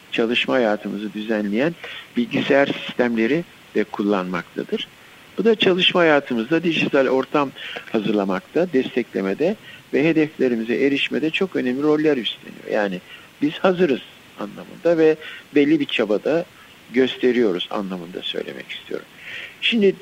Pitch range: 125-180 Hz